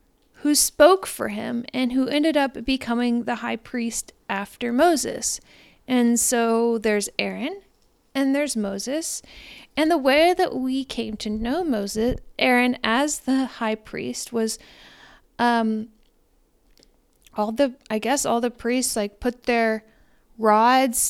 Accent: American